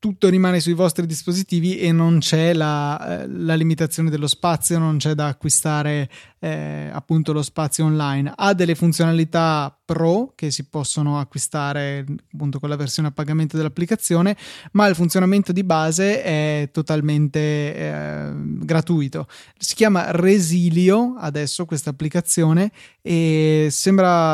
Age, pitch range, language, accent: 20-39, 145-170 Hz, Italian, native